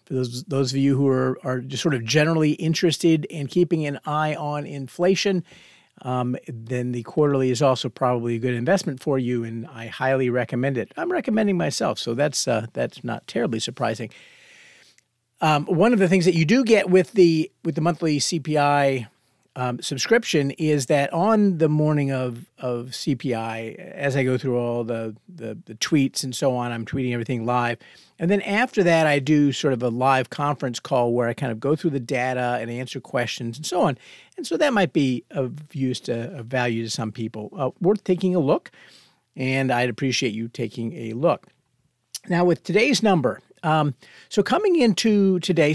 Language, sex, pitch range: English, male, 130-180 Hz